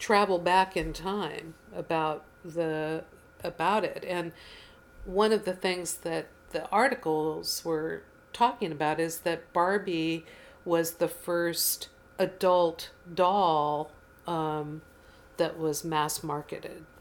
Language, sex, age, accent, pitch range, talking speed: English, female, 50-69, American, 155-180 Hz, 115 wpm